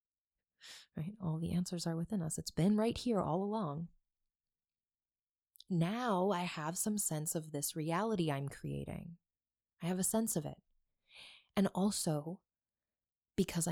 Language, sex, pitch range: English, female, 155-190 Hz